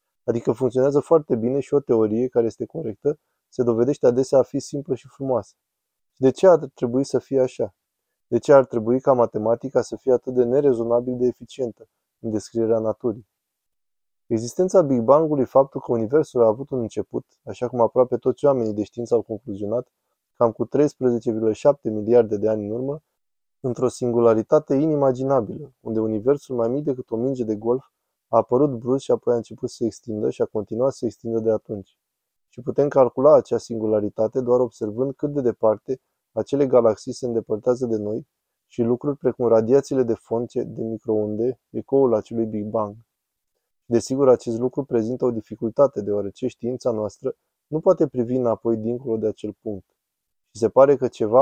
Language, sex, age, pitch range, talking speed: Romanian, male, 20-39, 110-130 Hz, 175 wpm